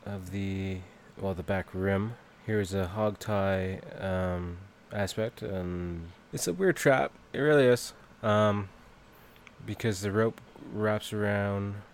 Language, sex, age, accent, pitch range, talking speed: English, male, 20-39, American, 100-110 Hz, 130 wpm